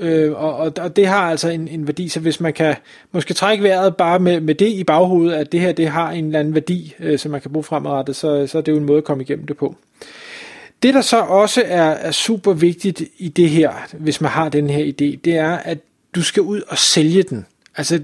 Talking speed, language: 255 wpm, Danish